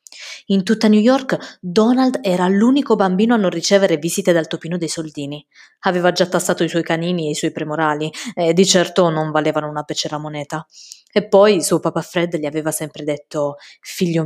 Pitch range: 155-180 Hz